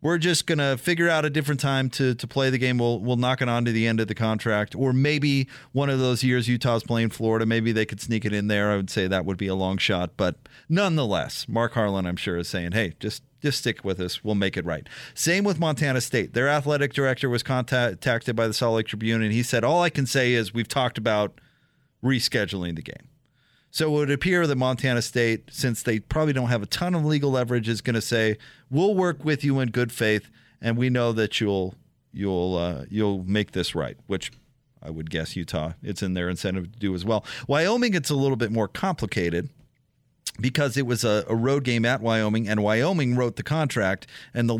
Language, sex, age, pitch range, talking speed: English, male, 30-49, 110-140 Hz, 230 wpm